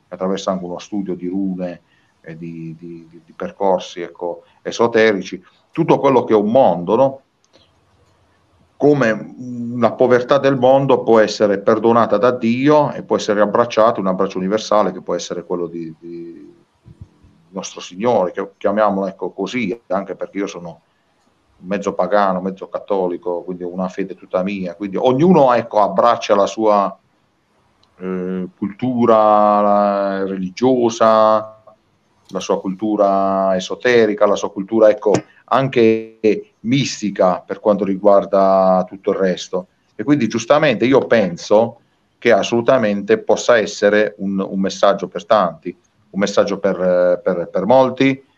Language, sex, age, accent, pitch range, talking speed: Italian, male, 40-59, native, 95-110 Hz, 135 wpm